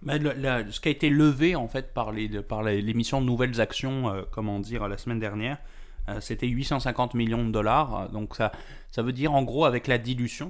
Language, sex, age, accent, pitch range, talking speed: French, male, 20-39, French, 110-130 Hz, 230 wpm